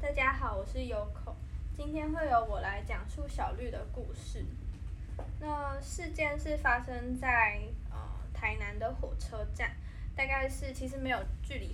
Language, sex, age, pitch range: Chinese, female, 10-29, 225-290 Hz